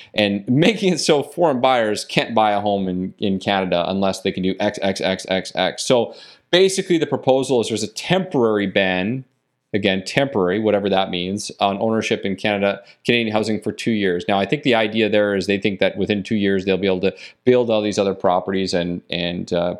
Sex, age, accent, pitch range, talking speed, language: male, 30-49, American, 95-125 Hz, 210 wpm, English